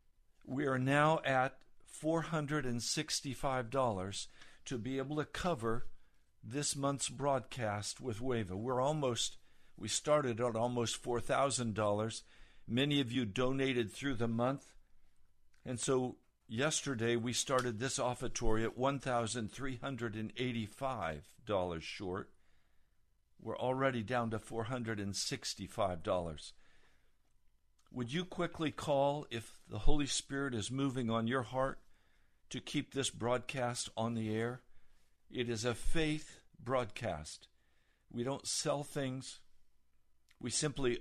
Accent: American